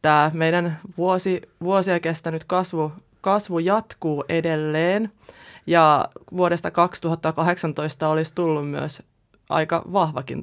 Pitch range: 150-170 Hz